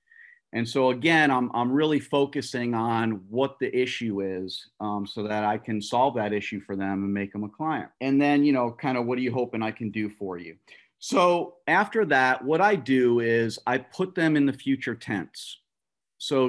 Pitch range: 110-135 Hz